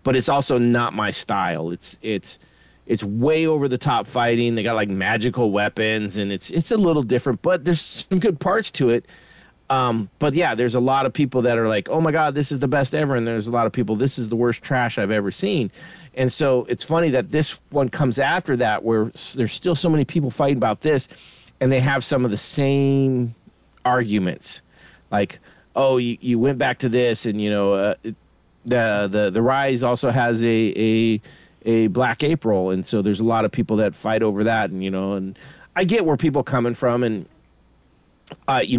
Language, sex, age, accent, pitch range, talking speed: English, male, 30-49, American, 110-145 Hz, 215 wpm